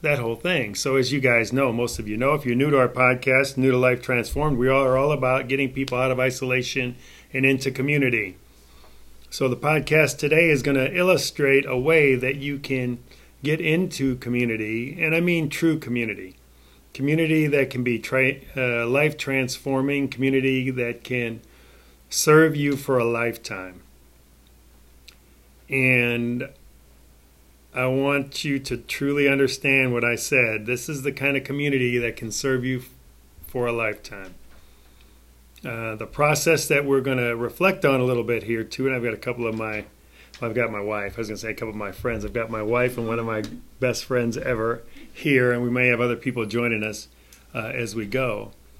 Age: 40-59